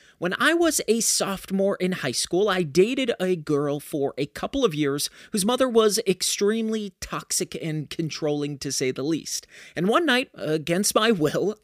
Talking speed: 175 wpm